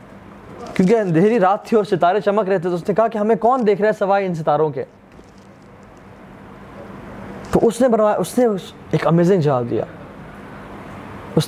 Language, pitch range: Urdu, 165-225 Hz